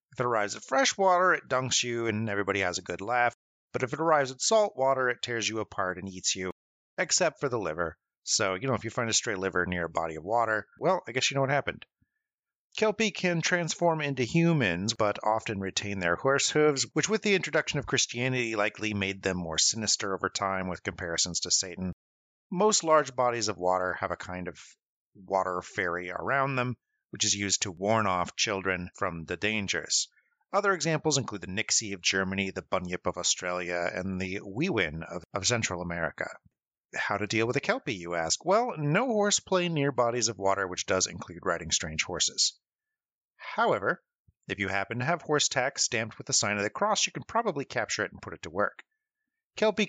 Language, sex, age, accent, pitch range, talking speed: English, male, 30-49, American, 95-155 Hz, 205 wpm